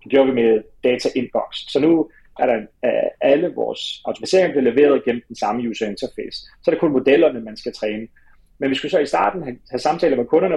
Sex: male